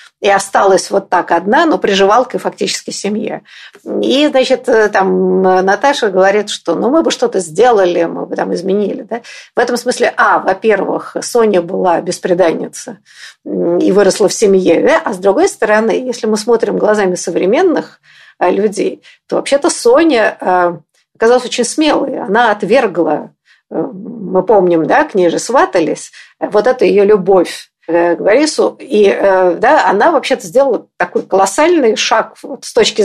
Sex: female